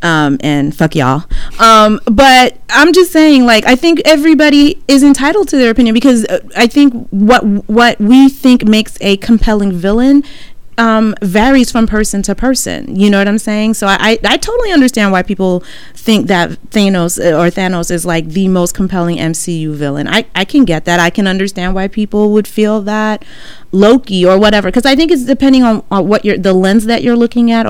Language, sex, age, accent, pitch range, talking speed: English, female, 30-49, American, 180-230 Hz, 195 wpm